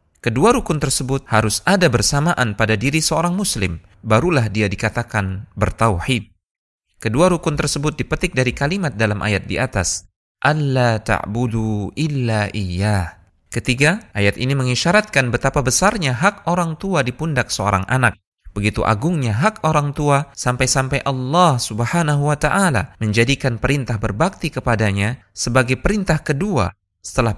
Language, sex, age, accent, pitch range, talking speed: Indonesian, male, 20-39, native, 105-150 Hz, 125 wpm